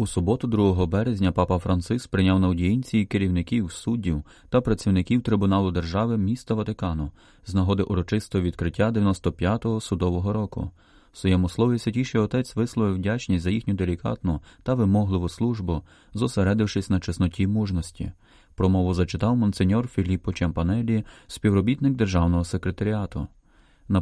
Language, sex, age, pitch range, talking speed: Ukrainian, male, 30-49, 90-110 Hz, 125 wpm